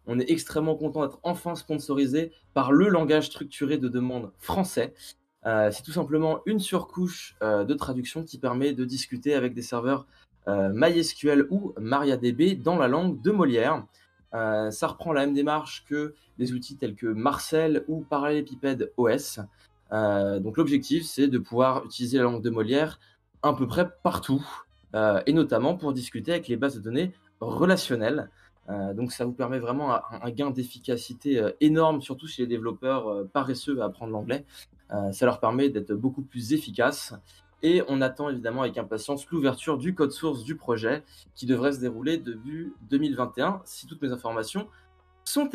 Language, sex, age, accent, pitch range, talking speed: French, male, 20-39, French, 115-155 Hz, 170 wpm